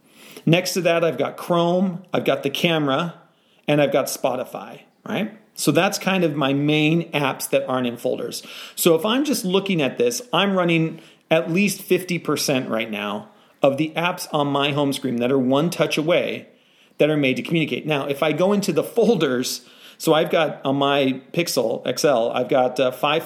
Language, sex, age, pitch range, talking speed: English, male, 40-59, 130-170 Hz, 190 wpm